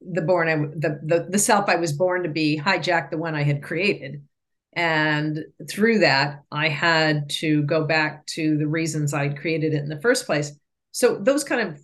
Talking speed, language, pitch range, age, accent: 205 wpm, English, 150-185 Hz, 40-59, American